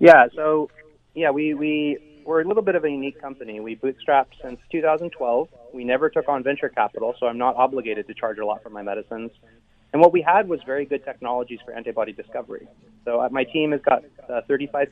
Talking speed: 210 wpm